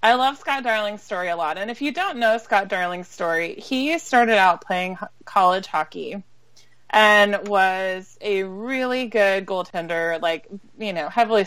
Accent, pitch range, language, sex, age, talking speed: American, 175-220 Hz, English, female, 20-39, 160 wpm